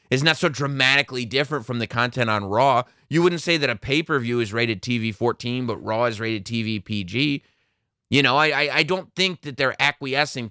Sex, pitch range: male, 115-155 Hz